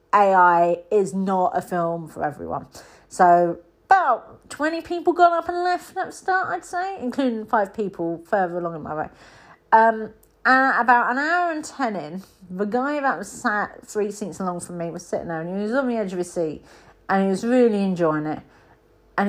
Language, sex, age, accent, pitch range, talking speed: English, female, 40-59, British, 180-255 Hz, 200 wpm